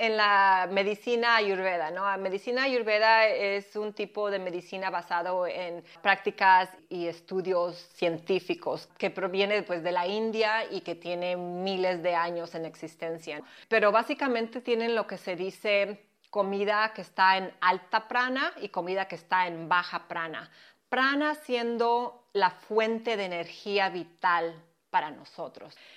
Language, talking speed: Spanish, 140 wpm